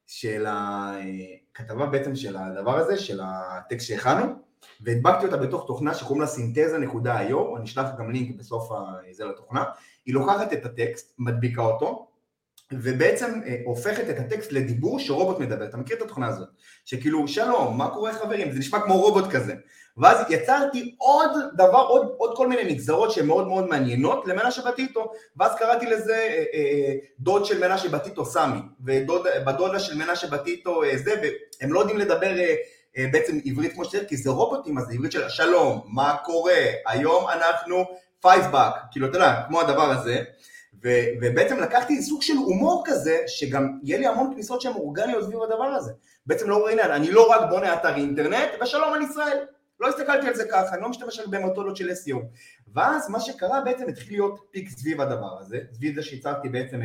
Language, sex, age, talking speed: Hebrew, male, 30-49, 175 wpm